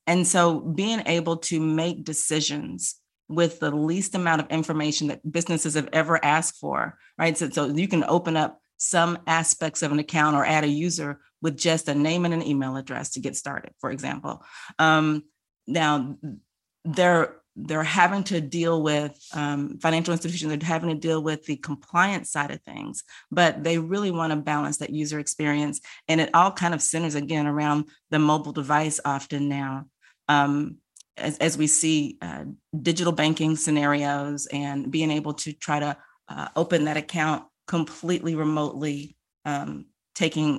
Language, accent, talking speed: English, American, 170 wpm